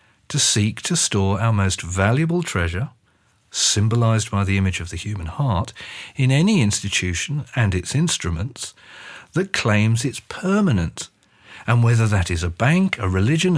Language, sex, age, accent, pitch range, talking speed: English, male, 50-69, British, 95-150 Hz, 150 wpm